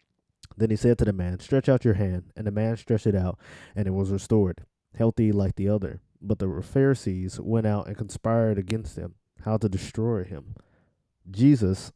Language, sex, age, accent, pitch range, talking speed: English, male, 20-39, American, 95-115 Hz, 190 wpm